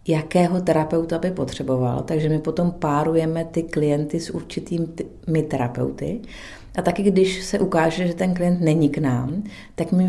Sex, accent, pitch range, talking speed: female, native, 145-165 Hz, 155 wpm